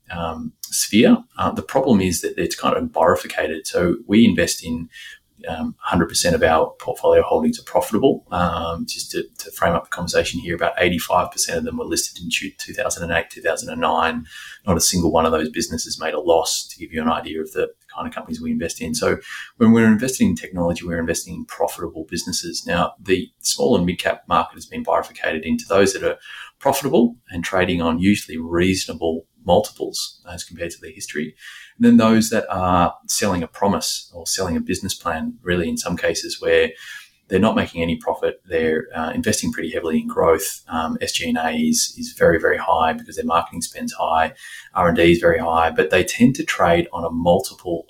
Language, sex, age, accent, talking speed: English, male, 30-49, Australian, 195 wpm